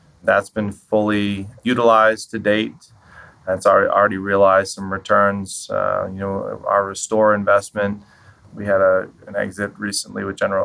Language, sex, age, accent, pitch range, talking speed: English, male, 20-39, American, 100-110 Hz, 140 wpm